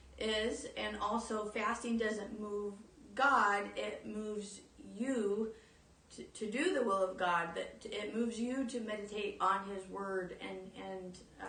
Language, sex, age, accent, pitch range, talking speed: English, female, 30-49, American, 200-240 Hz, 145 wpm